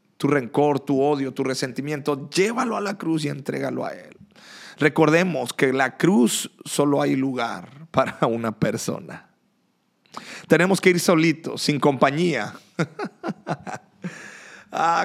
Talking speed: 130 wpm